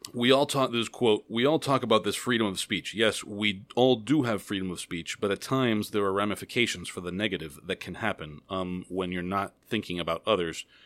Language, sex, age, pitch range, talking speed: English, male, 30-49, 95-120 Hz, 220 wpm